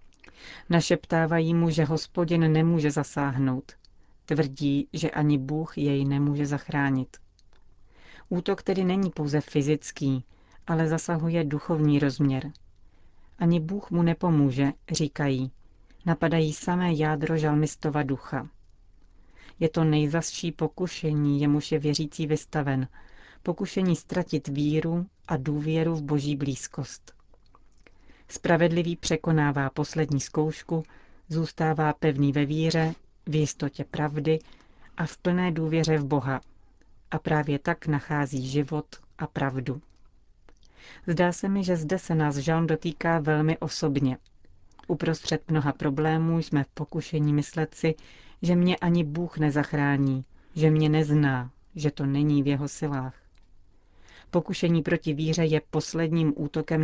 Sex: female